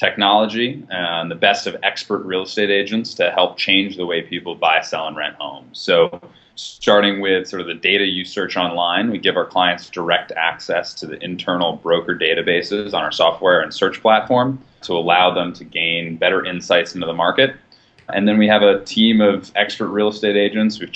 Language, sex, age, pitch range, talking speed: English, male, 30-49, 85-105 Hz, 200 wpm